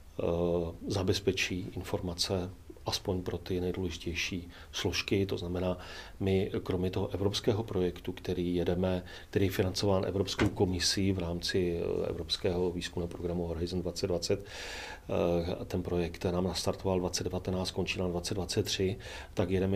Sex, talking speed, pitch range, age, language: male, 120 wpm, 85-95 Hz, 40-59, Czech